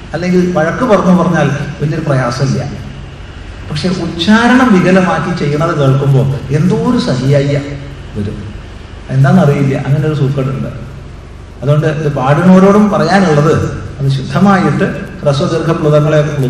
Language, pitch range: Malayalam, 115-145 Hz